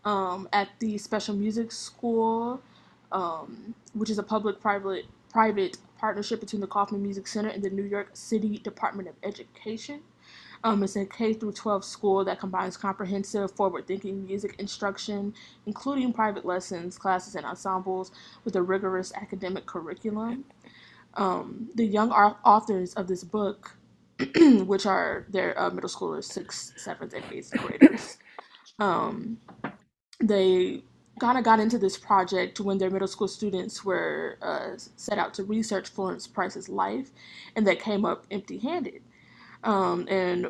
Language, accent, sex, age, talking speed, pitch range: English, American, female, 20-39, 140 wpm, 195-220 Hz